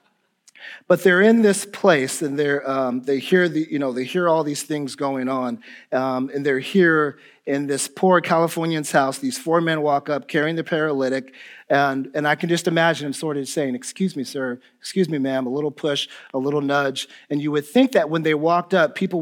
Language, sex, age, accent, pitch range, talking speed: English, male, 40-59, American, 135-170 Hz, 215 wpm